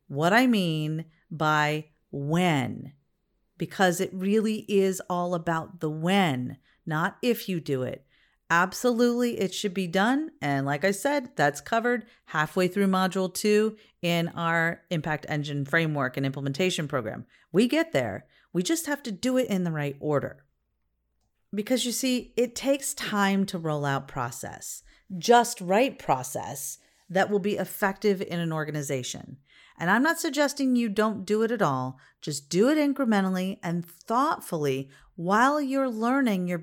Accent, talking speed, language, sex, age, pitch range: American, 155 wpm, English, female, 40-59, 155-230 Hz